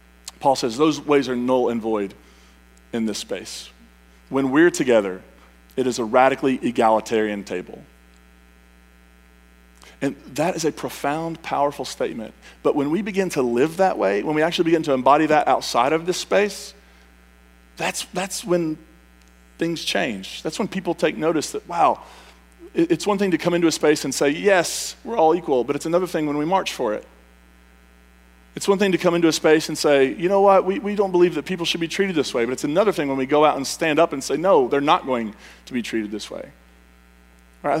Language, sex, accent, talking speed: English, male, American, 205 wpm